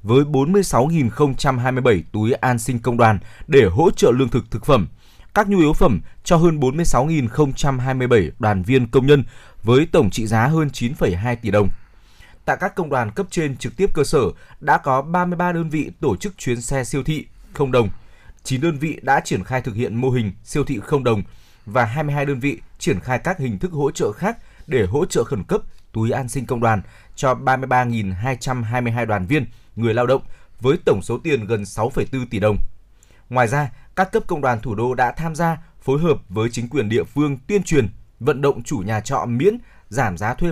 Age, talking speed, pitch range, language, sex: 20-39, 200 wpm, 110-145 Hz, Vietnamese, male